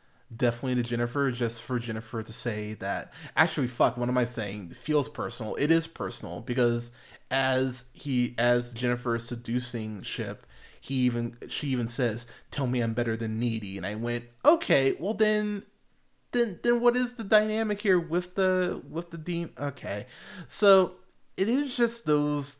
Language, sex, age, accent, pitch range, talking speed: English, male, 20-39, American, 120-165 Hz, 170 wpm